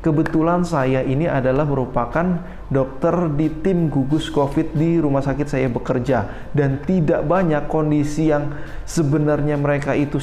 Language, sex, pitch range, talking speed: Indonesian, male, 130-160 Hz, 135 wpm